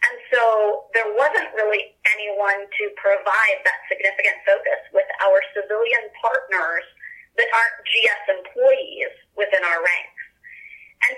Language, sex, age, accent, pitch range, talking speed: English, female, 30-49, American, 200-290 Hz, 120 wpm